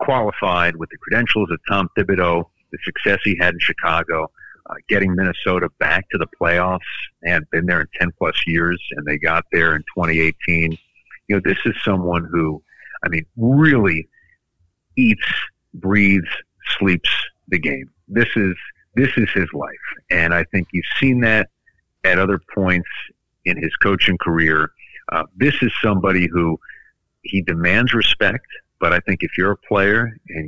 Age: 50-69